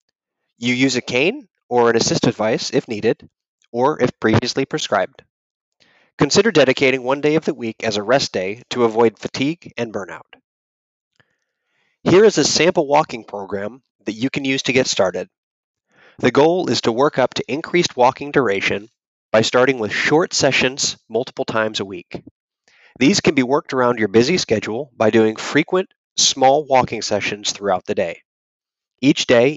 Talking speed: 165 wpm